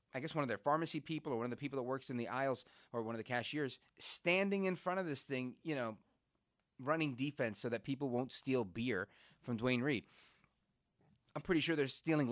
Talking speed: 225 wpm